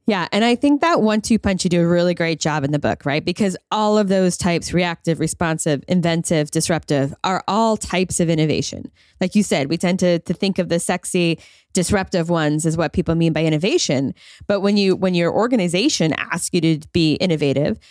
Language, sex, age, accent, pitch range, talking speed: English, female, 20-39, American, 165-200 Hz, 205 wpm